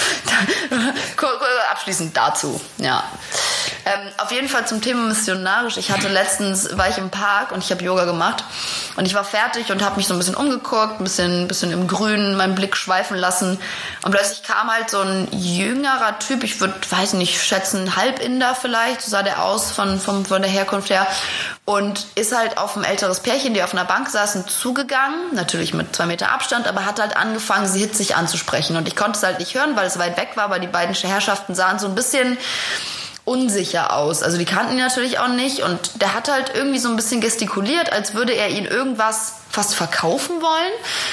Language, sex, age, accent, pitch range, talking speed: German, female, 20-39, German, 185-235 Hz, 200 wpm